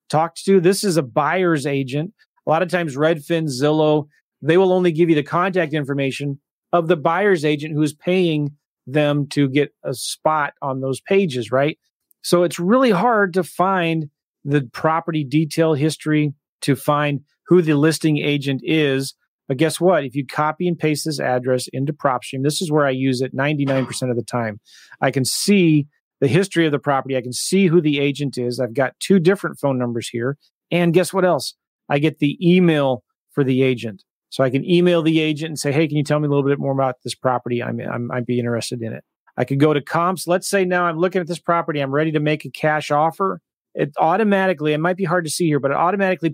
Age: 30-49